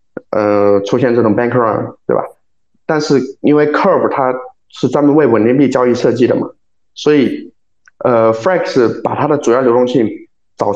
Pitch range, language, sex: 115-175 Hz, Chinese, male